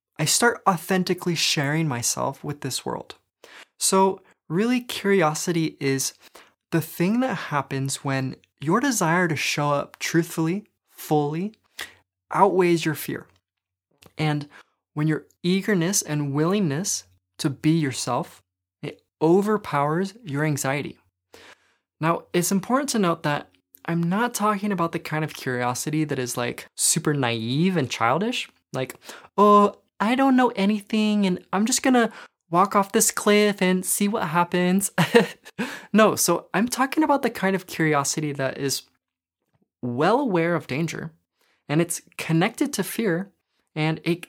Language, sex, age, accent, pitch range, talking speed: English, male, 20-39, American, 145-195 Hz, 135 wpm